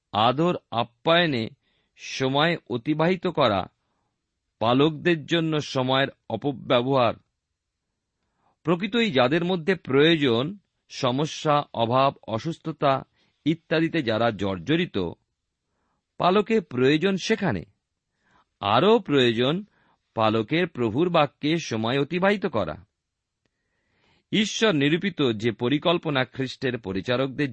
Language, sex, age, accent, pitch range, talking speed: Bengali, male, 50-69, native, 105-160 Hz, 75 wpm